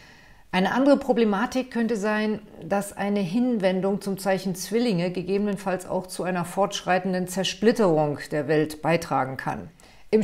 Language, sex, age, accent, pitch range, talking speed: German, female, 50-69, German, 170-205 Hz, 130 wpm